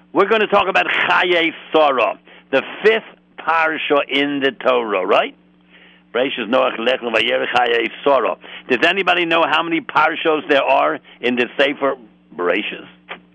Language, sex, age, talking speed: English, male, 60-79, 135 wpm